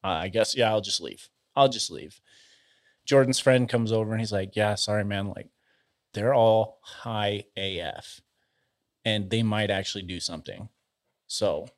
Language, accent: English, American